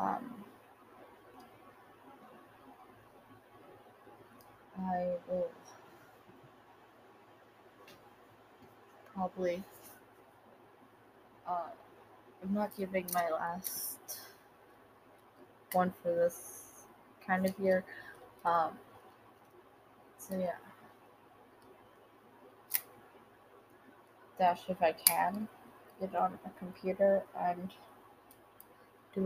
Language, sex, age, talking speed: English, female, 20-39, 60 wpm